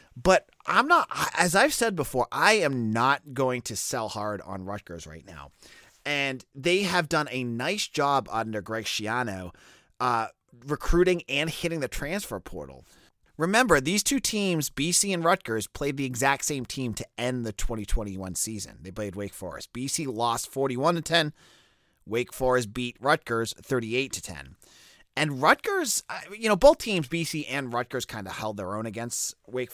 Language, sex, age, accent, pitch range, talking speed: English, male, 30-49, American, 110-155 Hz, 170 wpm